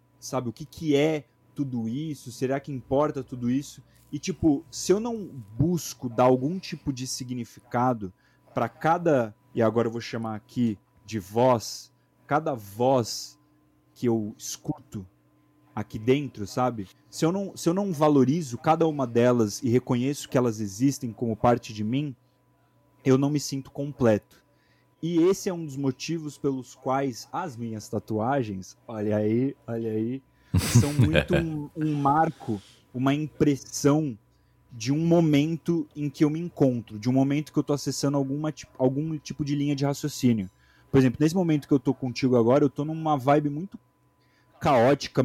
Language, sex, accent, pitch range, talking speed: Portuguese, male, Brazilian, 120-150 Hz, 160 wpm